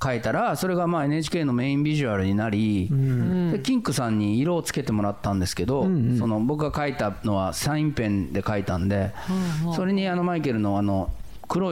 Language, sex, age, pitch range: Japanese, male, 40-59, 105-170 Hz